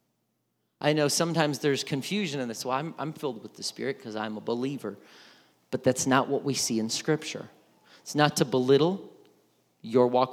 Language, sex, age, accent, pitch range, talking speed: English, male, 40-59, American, 125-160 Hz, 185 wpm